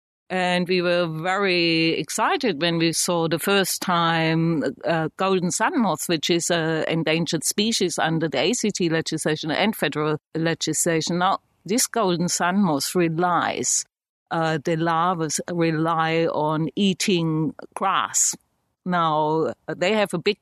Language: English